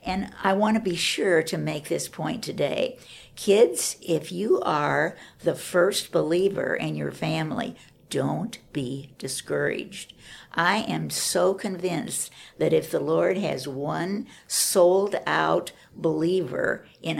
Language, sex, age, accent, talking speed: English, female, 60-79, American, 130 wpm